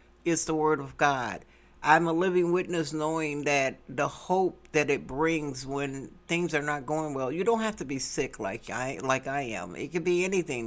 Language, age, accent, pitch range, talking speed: English, 60-79, American, 135-160 Hz, 210 wpm